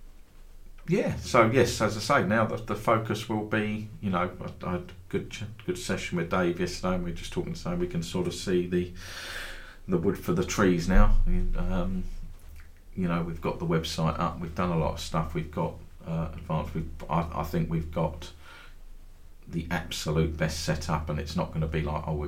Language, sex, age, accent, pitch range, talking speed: English, male, 40-59, British, 80-95 Hz, 215 wpm